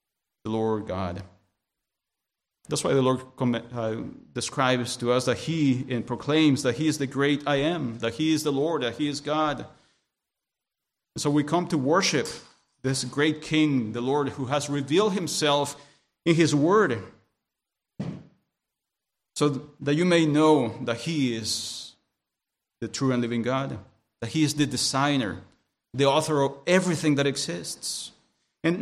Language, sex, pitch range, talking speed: English, male, 125-155 Hz, 150 wpm